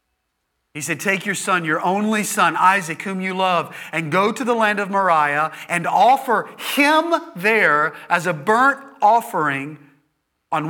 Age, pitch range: 40-59, 110-165 Hz